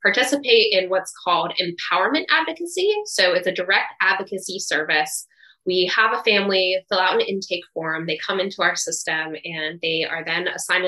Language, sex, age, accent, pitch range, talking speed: English, female, 10-29, American, 170-200 Hz, 170 wpm